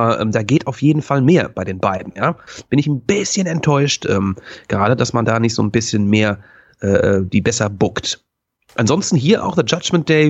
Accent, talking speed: German, 215 wpm